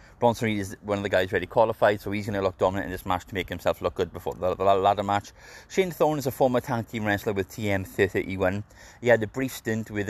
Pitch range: 95-125 Hz